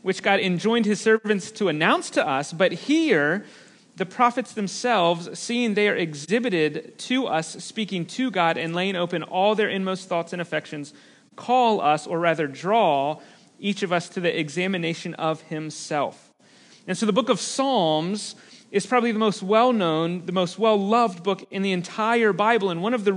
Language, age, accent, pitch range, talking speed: English, 30-49, American, 185-225 Hz, 180 wpm